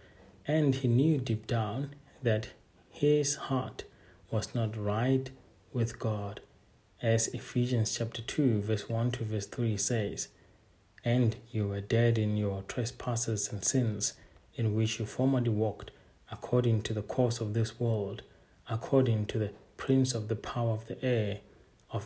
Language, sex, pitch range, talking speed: English, male, 105-125 Hz, 150 wpm